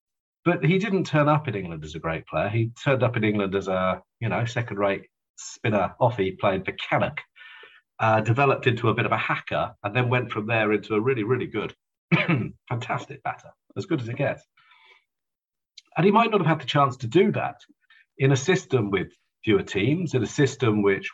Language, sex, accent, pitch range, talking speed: English, male, British, 105-145 Hz, 200 wpm